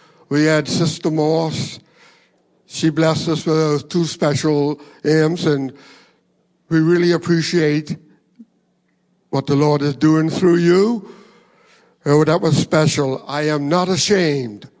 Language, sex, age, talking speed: English, male, 60-79, 120 wpm